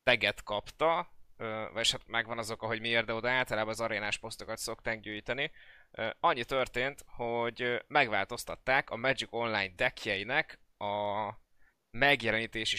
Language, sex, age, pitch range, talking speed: Hungarian, male, 20-39, 105-120 Hz, 125 wpm